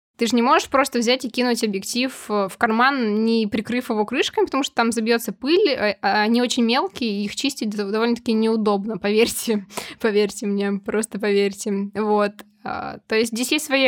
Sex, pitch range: female, 215-255 Hz